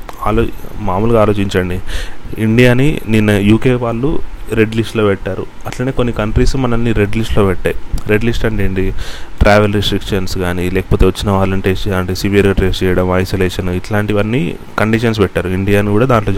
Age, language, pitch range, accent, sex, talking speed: 30-49, Telugu, 95-115 Hz, native, male, 135 wpm